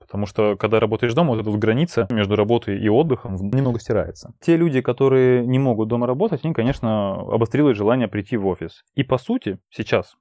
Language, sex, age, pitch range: Russian, male, 20-39, 105-135 Hz